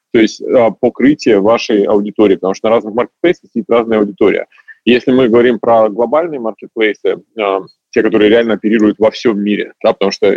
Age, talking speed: 30-49, 180 wpm